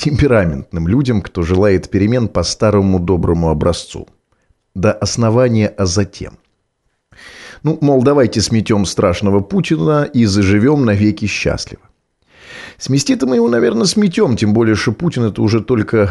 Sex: male